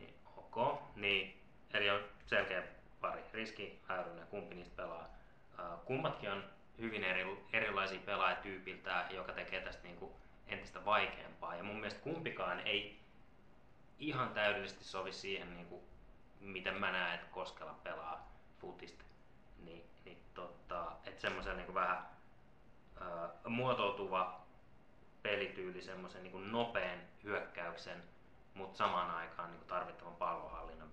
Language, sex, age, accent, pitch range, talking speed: Finnish, male, 20-39, native, 90-105 Hz, 110 wpm